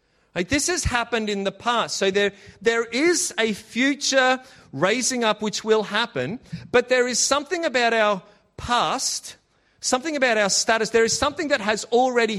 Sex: male